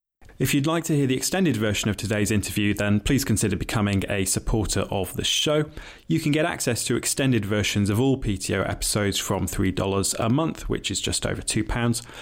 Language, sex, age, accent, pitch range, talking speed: English, male, 30-49, British, 100-125 Hz, 195 wpm